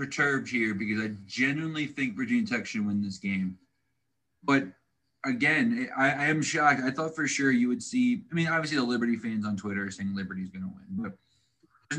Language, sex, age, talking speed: English, male, 20-39, 205 wpm